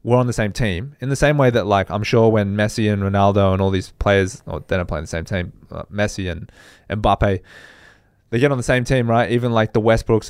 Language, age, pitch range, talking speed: English, 20-39, 100-120 Hz, 255 wpm